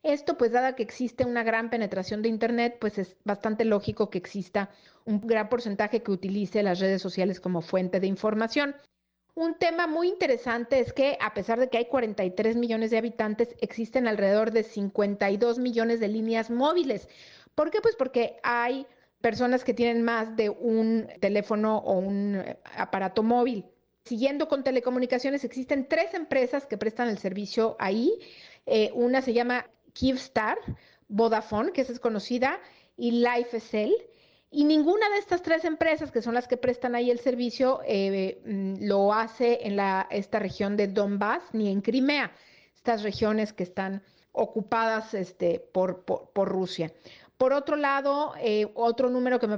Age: 40-59